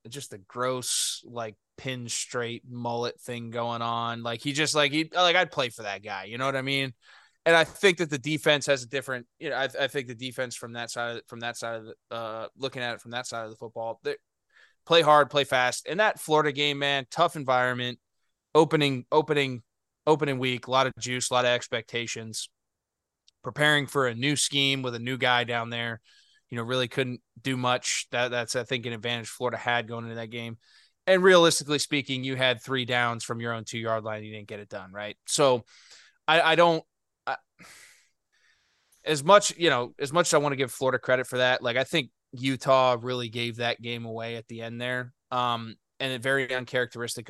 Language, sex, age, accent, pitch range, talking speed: English, male, 20-39, American, 115-140 Hz, 215 wpm